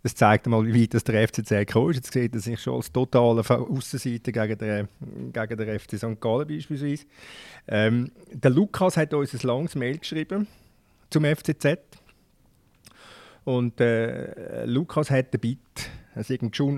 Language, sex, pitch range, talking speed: German, male, 110-135 Hz, 155 wpm